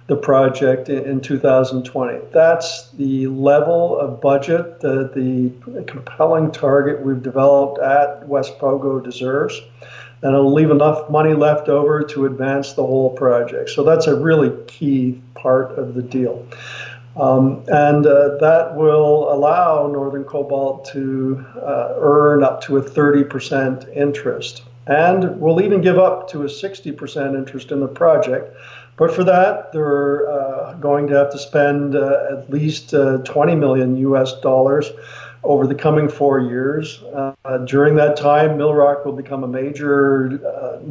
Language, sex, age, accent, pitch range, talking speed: English, male, 50-69, American, 135-150 Hz, 150 wpm